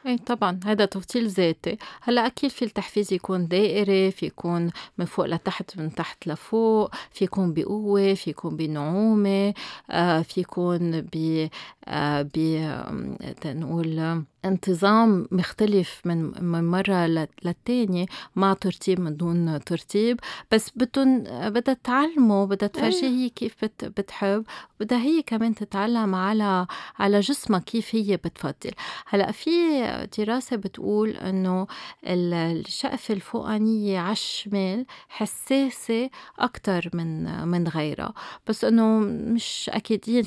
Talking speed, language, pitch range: 105 wpm, Arabic, 175-225 Hz